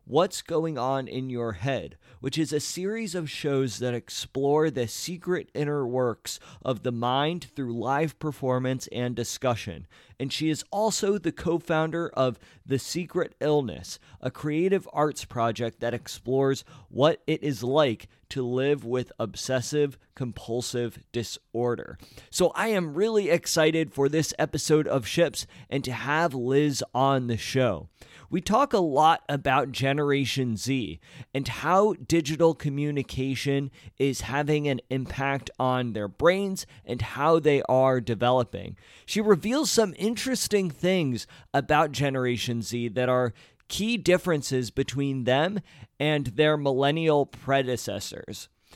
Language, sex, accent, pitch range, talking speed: English, male, American, 125-160 Hz, 135 wpm